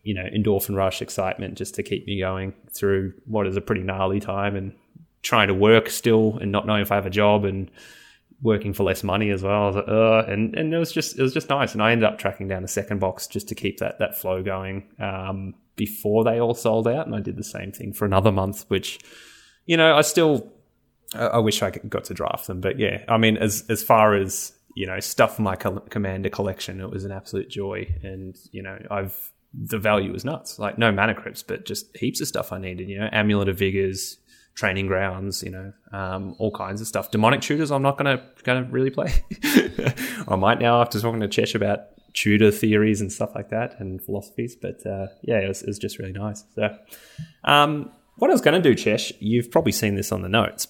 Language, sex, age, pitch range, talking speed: English, male, 20-39, 95-115 Hz, 225 wpm